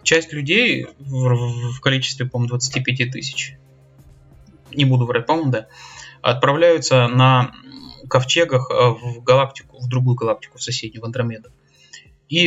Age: 20-39